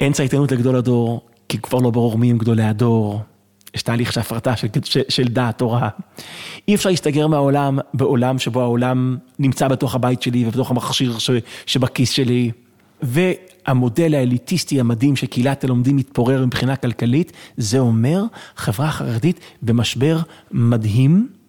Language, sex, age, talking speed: Hebrew, male, 30-49, 135 wpm